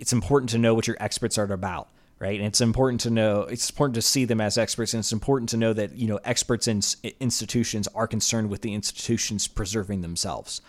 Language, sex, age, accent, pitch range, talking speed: English, male, 30-49, American, 100-120 Hz, 225 wpm